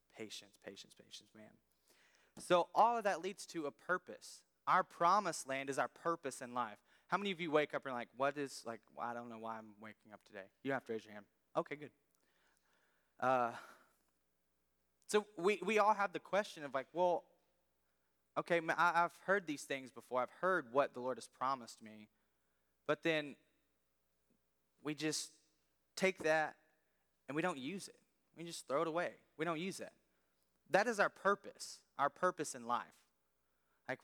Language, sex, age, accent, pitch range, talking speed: English, male, 20-39, American, 110-170 Hz, 180 wpm